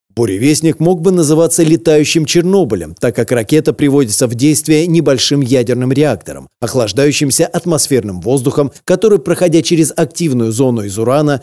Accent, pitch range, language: native, 120-150 Hz, Russian